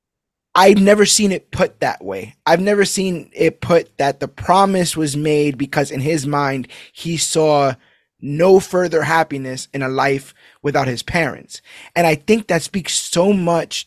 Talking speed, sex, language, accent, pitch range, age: 170 wpm, male, English, American, 140-180 Hz, 20-39